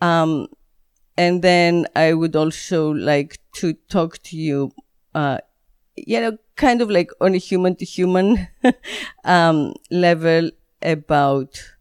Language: English